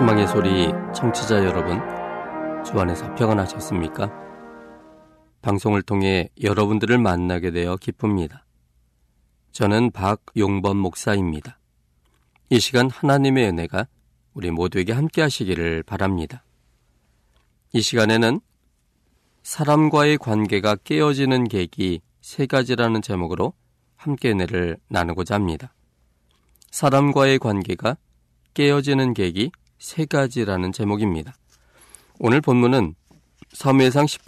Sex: male